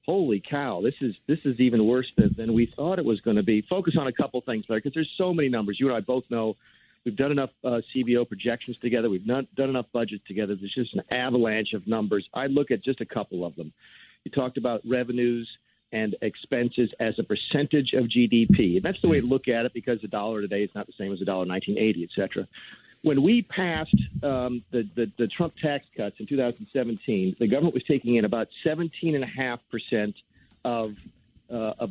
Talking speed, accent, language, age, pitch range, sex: 215 wpm, American, English, 50-69, 110-140 Hz, male